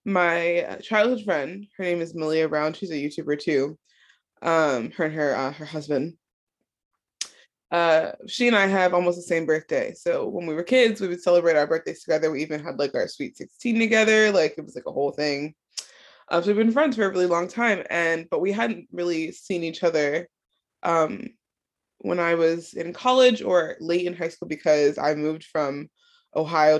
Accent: American